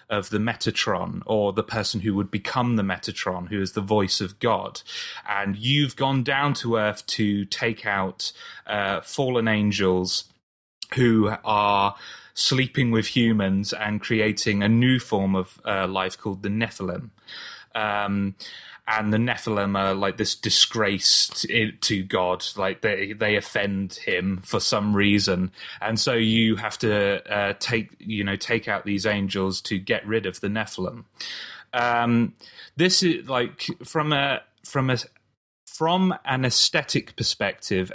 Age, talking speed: 20-39, 150 wpm